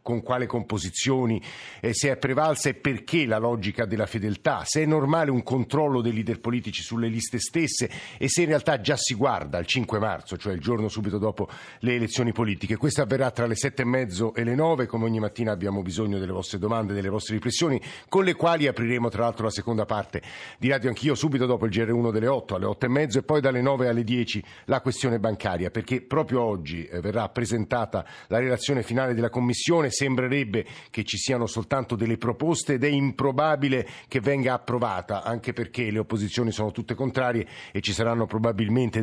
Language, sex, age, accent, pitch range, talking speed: Italian, male, 50-69, native, 110-135 Hz, 195 wpm